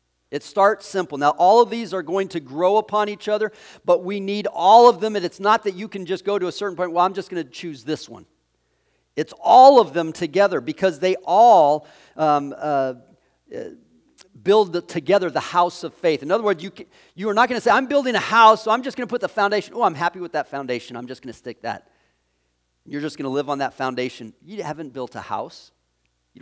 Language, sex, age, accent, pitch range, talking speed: English, male, 40-59, American, 145-210 Hz, 240 wpm